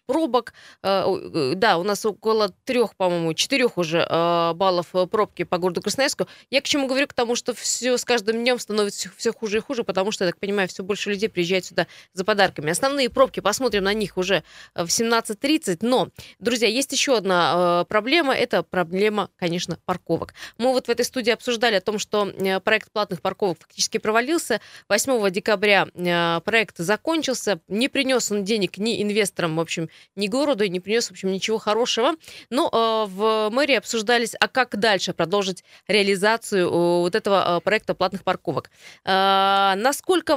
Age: 20-39